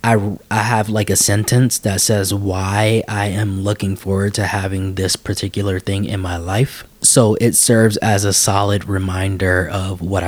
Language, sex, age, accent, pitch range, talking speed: English, male, 20-39, American, 100-115 Hz, 175 wpm